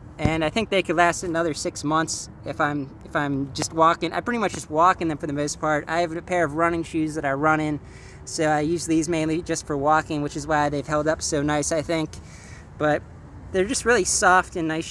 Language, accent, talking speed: English, American, 250 wpm